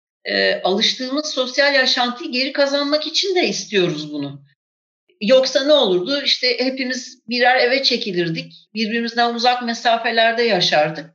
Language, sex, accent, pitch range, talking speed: Turkish, female, native, 195-255 Hz, 120 wpm